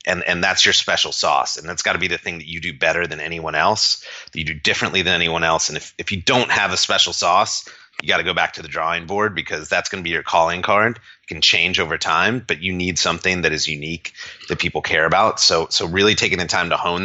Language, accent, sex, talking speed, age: English, American, male, 270 wpm, 30-49